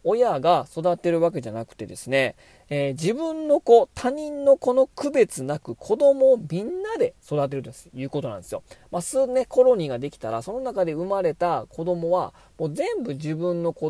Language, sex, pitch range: Japanese, male, 135-205 Hz